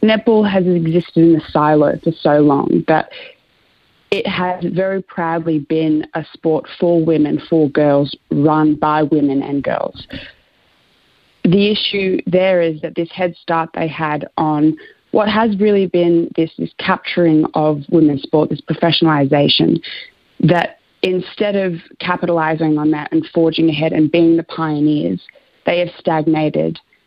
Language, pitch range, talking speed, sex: English, 155-175 Hz, 145 wpm, female